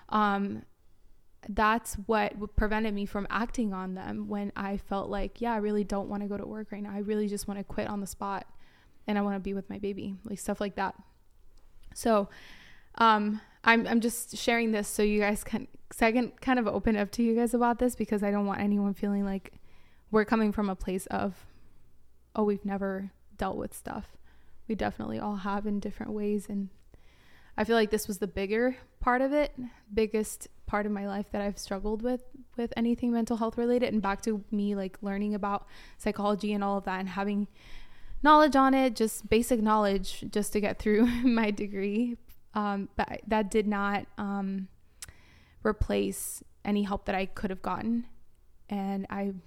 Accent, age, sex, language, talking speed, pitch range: American, 20-39, female, English, 195 wpm, 195-220 Hz